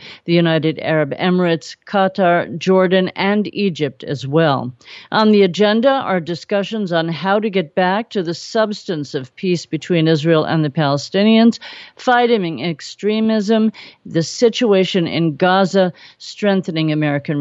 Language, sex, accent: English, female, American